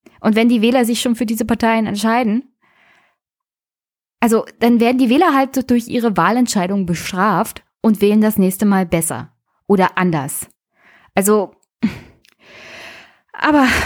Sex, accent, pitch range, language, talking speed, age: female, German, 175-225 Hz, German, 130 wpm, 20-39